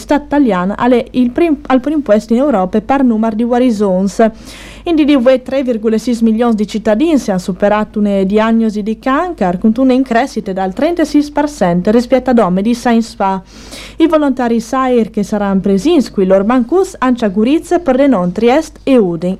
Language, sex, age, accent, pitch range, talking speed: Italian, female, 40-59, native, 210-275 Hz, 165 wpm